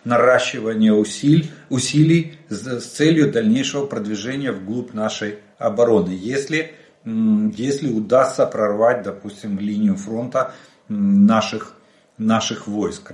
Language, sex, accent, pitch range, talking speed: Russian, male, native, 105-140 Hz, 85 wpm